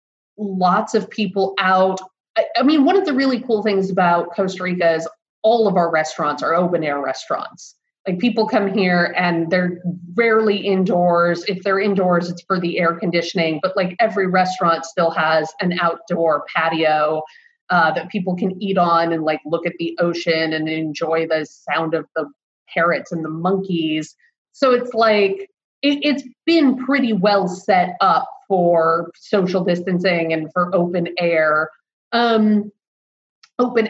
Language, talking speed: English, 160 wpm